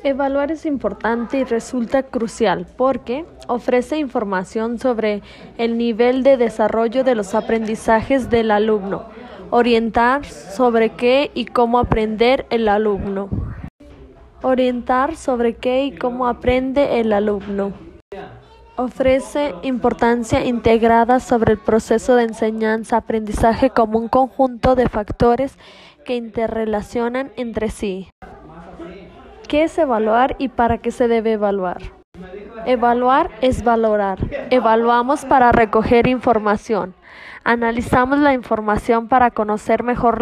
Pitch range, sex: 220-255 Hz, female